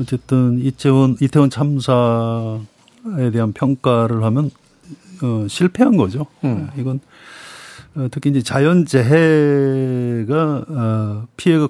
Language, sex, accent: Korean, male, native